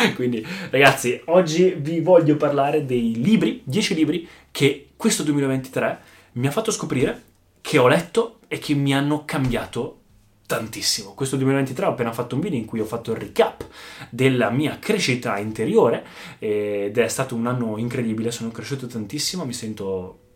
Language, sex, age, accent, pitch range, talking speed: Italian, male, 20-39, native, 110-150 Hz, 160 wpm